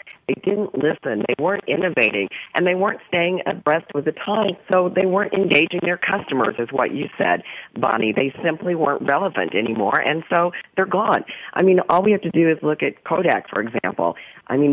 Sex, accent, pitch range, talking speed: female, American, 135-180 Hz, 190 wpm